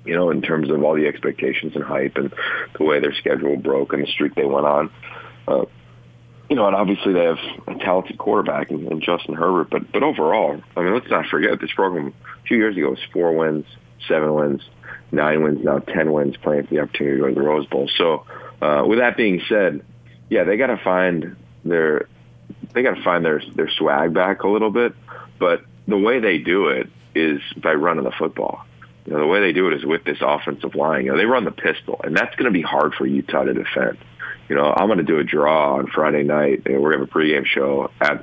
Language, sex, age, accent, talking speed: English, male, 40-59, American, 235 wpm